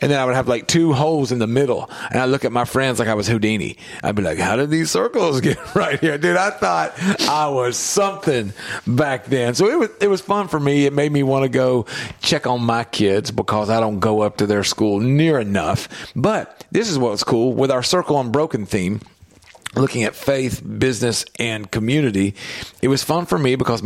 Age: 40-59